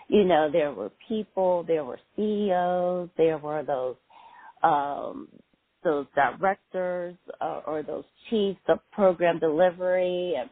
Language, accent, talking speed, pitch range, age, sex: English, American, 125 wpm, 150-190 Hz, 40-59, female